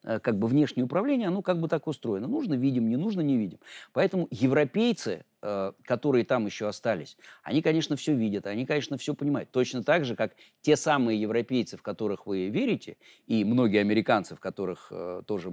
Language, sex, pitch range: Russian, male, 110-155 Hz